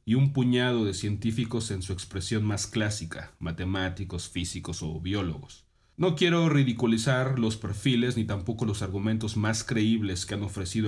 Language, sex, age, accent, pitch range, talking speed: Spanish, male, 40-59, Mexican, 95-120 Hz, 155 wpm